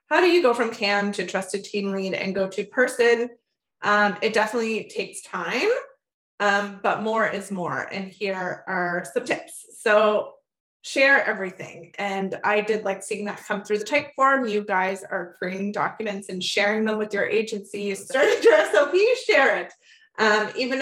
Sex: female